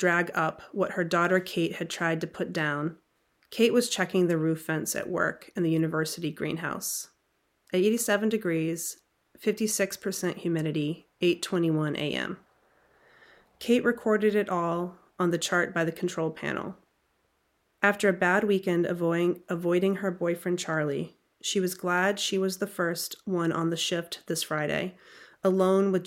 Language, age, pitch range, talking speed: English, 30-49, 165-190 Hz, 145 wpm